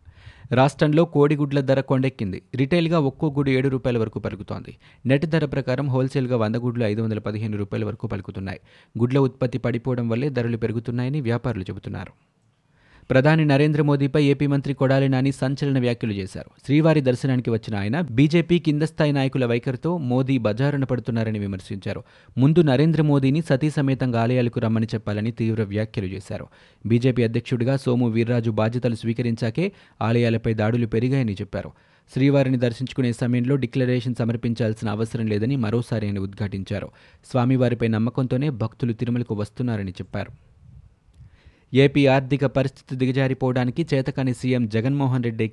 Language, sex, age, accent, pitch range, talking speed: Telugu, male, 30-49, native, 115-135 Hz, 130 wpm